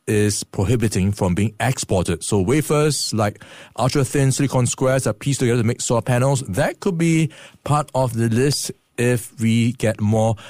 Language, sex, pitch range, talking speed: English, male, 105-140 Hz, 165 wpm